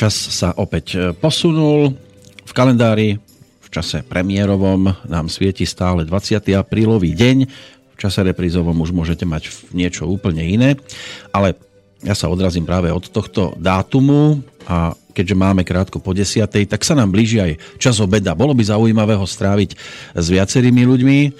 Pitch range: 90-110 Hz